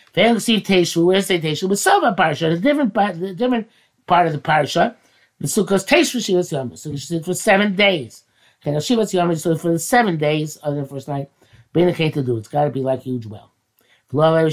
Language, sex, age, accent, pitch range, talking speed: English, male, 50-69, American, 155-200 Hz, 200 wpm